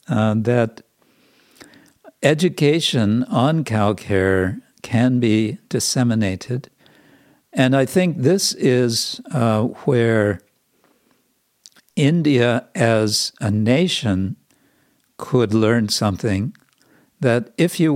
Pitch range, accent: 110-135 Hz, American